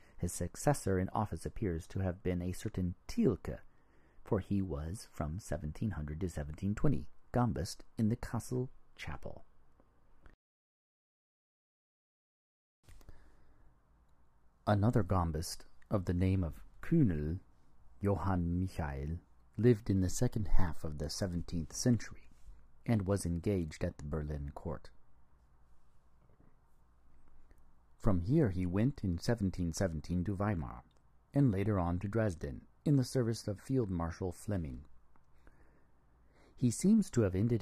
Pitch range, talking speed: 75-105 Hz, 120 wpm